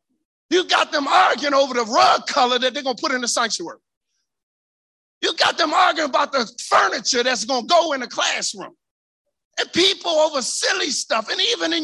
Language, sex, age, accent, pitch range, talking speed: English, male, 50-69, American, 260-330 Hz, 180 wpm